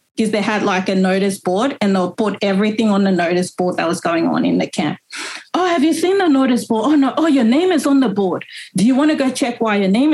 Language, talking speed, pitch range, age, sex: English, 280 wpm, 190-245 Hz, 30-49, female